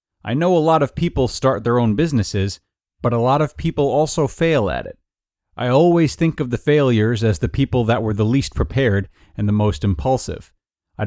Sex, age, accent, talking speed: male, 30-49, American, 205 wpm